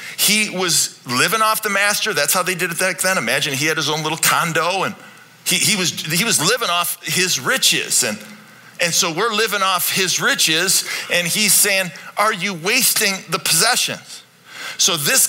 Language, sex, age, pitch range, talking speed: English, male, 40-59, 155-190 Hz, 190 wpm